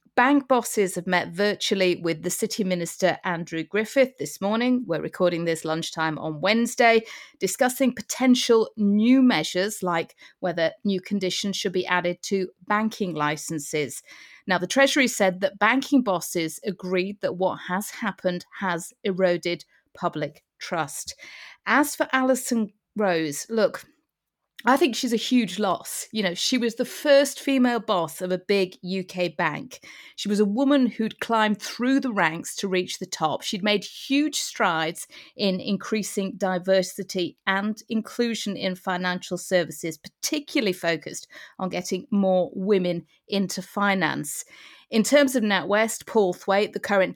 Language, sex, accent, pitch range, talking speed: English, female, British, 180-220 Hz, 145 wpm